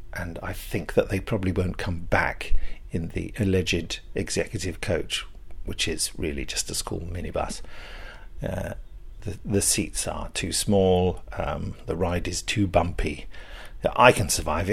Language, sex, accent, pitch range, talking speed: English, male, British, 90-105 Hz, 150 wpm